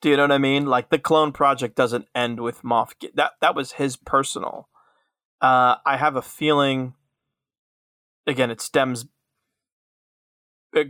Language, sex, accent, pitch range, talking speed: English, male, American, 120-140 Hz, 160 wpm